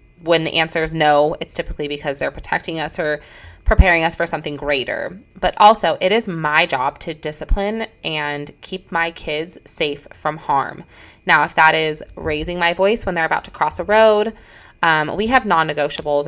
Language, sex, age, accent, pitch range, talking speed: English, female, 20-39, American, 145-175 Hz, 185 wpm